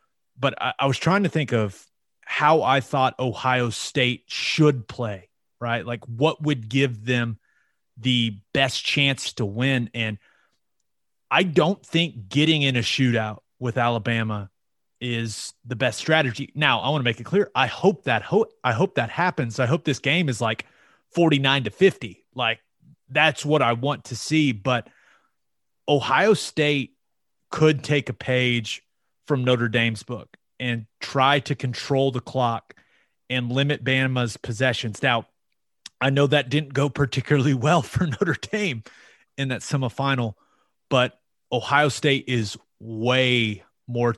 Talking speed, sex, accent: 150 wpm, male, American